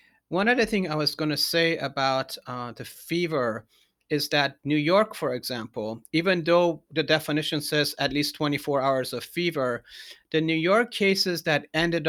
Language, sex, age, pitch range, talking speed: English, male, 40-59, 135-170 Hz, 175 wpm